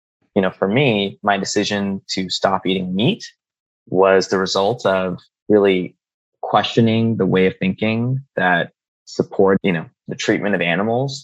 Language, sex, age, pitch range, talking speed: English, male, 20-39, 90-120 Hz, 150 wpm